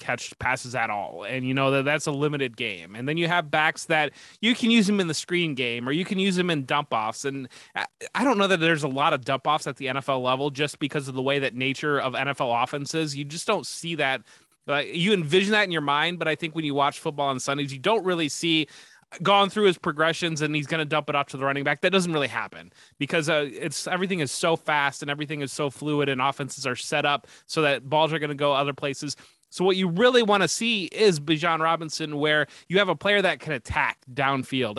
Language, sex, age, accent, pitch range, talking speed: English, male, 20-39, American, 140-170 Hz, 255 wpm